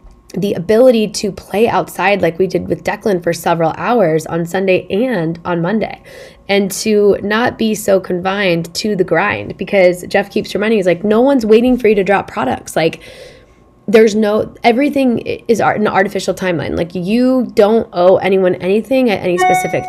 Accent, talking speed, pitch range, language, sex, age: American, 175 wpm, 175-225 Hz, English, female, 10-29